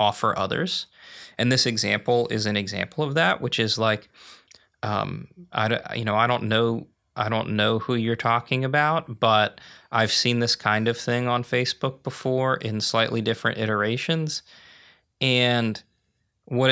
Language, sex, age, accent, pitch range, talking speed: English, male, 20-39, American, 105-120 Hz, 155 wpm